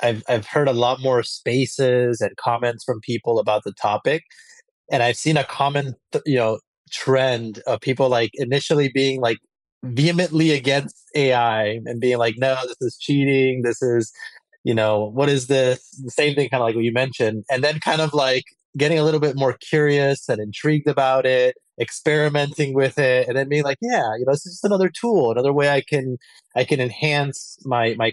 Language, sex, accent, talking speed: English, male, American, 200 wpm